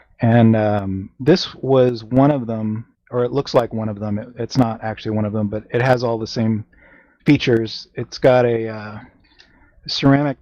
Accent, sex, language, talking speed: American, male, English, 190 wpm